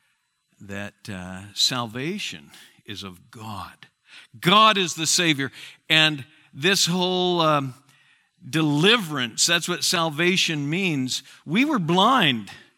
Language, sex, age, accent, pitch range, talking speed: English, male, 60-79, American, 120-185 Hz, 105 wpm